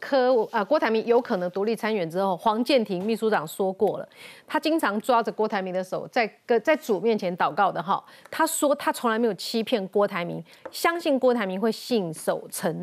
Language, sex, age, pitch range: Chinese, female, 30-49, 220-290 Hz